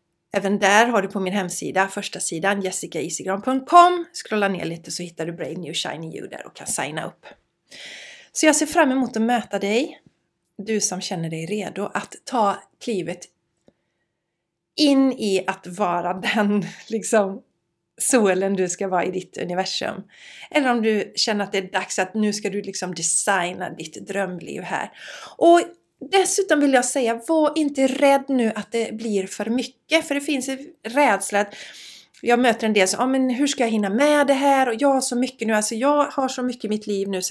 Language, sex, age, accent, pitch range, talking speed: Swedish, female, 30-49, native, 190-260 Hz, 195 wpm